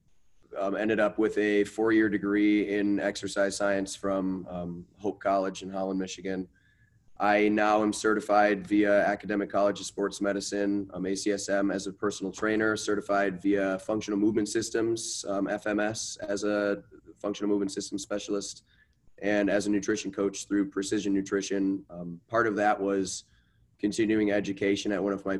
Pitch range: 100-105 Hz